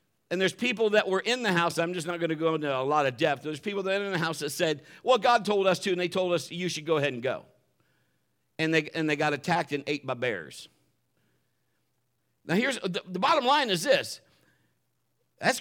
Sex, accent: male, American